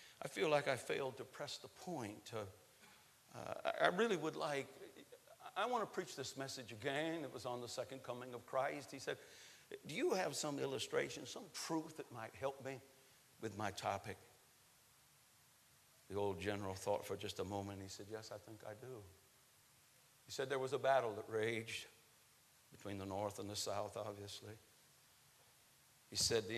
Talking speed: 180 wpm